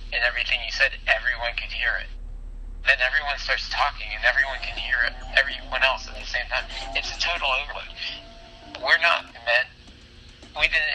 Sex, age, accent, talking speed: male, 40-59, American, 170 wpm